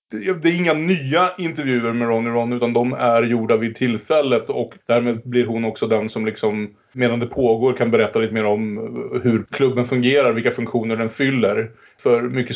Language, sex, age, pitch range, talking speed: Swedish, male, 30-49, 115-140 Hz, 195 wpm